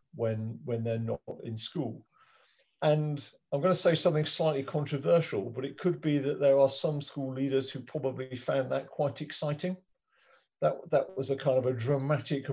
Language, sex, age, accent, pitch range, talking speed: English, male, 50-69, British, 115-140 Hz, 175 wpm